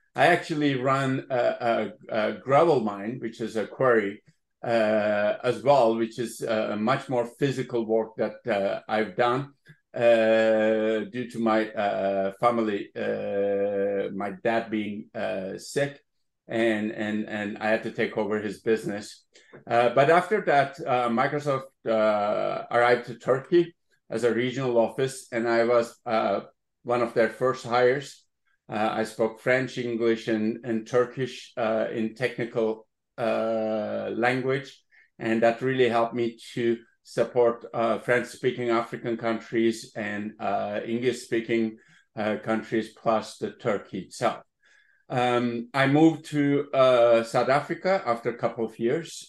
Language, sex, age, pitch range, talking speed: English, male, 50-69, 110-125 Hz, 140 wpm